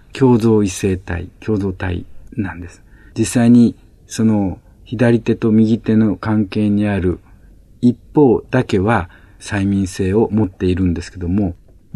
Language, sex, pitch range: Japanese, male, 95-125 Hz